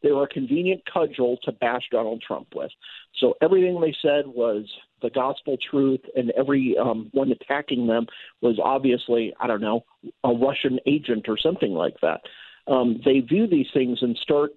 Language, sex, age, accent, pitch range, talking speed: English, male, 50-69, American, 125-165 Hz, 175 wpm